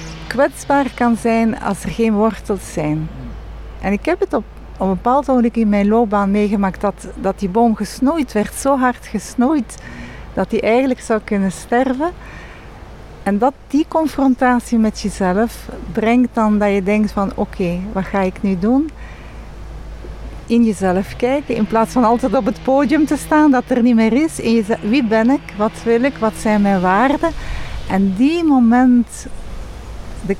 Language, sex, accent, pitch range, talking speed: English, female, Dutch, 200-255 Hz, 175 wpm